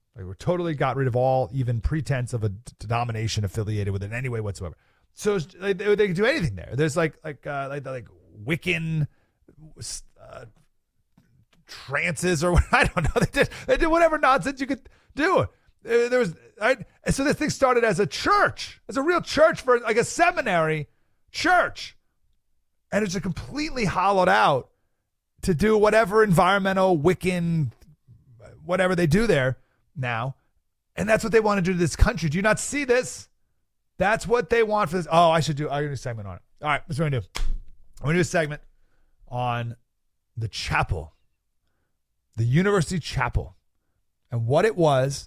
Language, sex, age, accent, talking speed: English, male, 30-49, American, 180 wpm